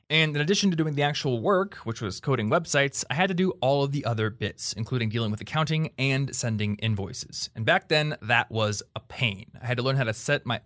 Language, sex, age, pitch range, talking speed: English, male, 20-39, 115-165 Hz, 240 wpm